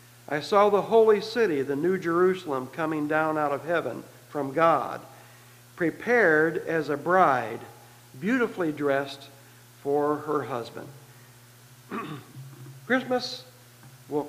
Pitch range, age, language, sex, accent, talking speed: 130-190 Hz, 60-79, English, male, American, 110 wpm